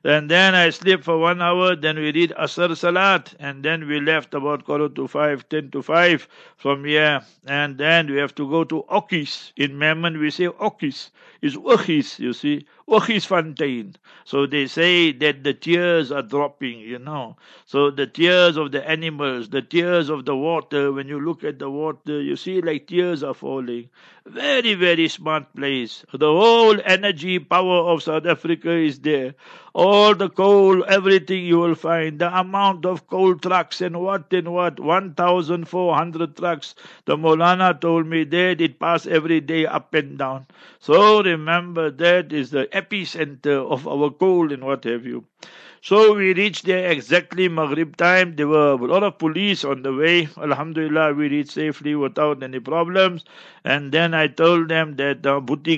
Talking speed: 180 wpm